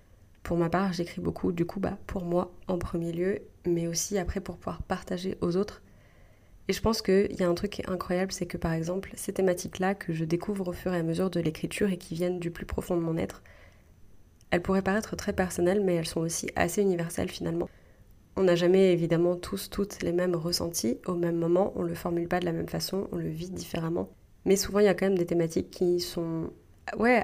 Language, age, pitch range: French, 20-39, 170-190 Hz